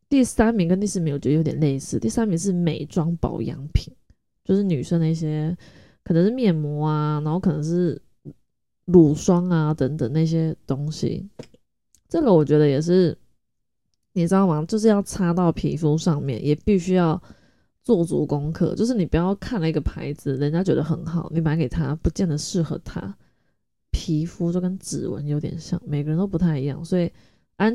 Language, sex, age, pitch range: Chinese, female, 20-39, 155-195 Hz